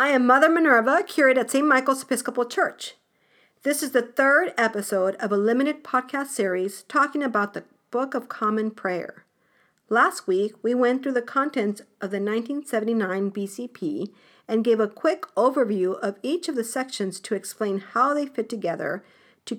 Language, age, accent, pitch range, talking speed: English, 50-69, American, 205-265 Hz, 170 wpm